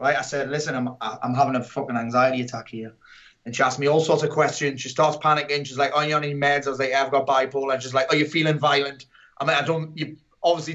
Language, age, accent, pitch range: English, 30-49, British, 140-165 Hz